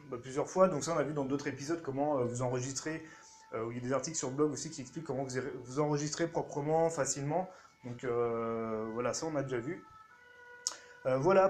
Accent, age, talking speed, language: French, 30-49, 210 wpm, French